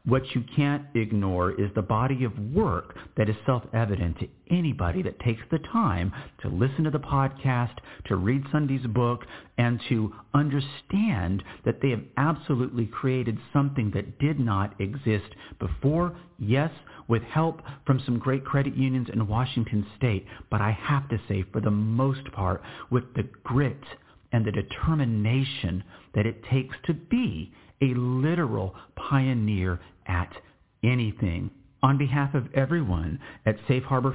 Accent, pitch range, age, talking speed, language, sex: American, 105-135 Hz, 50-69, 150 wpm, English, male